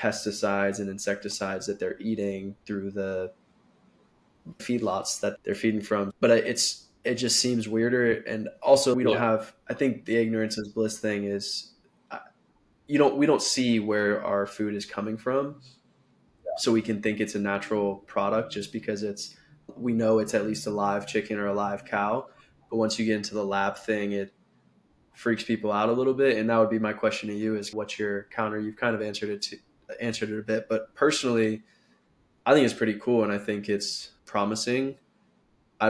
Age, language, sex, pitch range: 20-39, English, male, 100-110 Hz